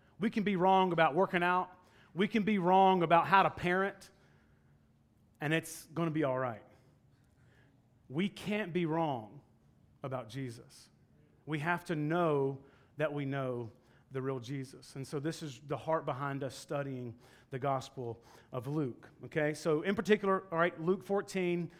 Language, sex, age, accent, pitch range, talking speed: English, male, 30-49, American, 150-185 Hz, 160 wpm